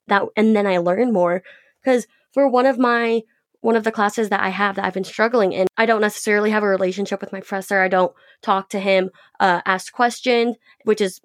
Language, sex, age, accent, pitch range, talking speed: English, female, 20-39, American, 190-230 Hz, 225 wpm